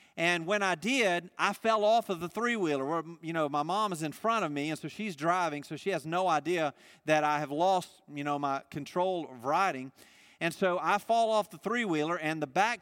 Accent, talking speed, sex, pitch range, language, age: American, 225 wpm, male, 155-200 Hz, English, 40-59